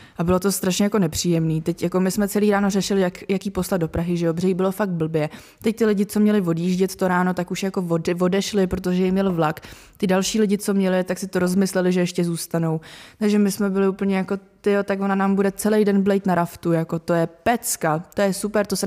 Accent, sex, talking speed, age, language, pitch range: native, female, 250 wpm, 20-39, Czech, 175-200 Hz